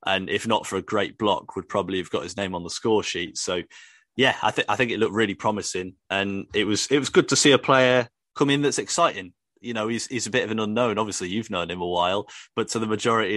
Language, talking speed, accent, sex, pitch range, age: English, 270 wpm, British, male, 105-145 Hz, 30-49